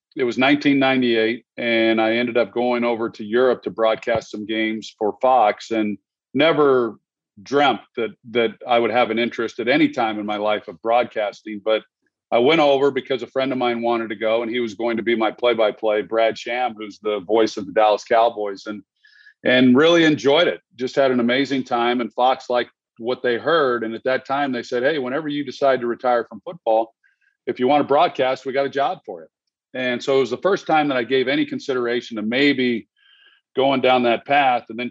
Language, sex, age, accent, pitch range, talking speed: English, male, 40-59, American, 115-135 Hz, 215 wpm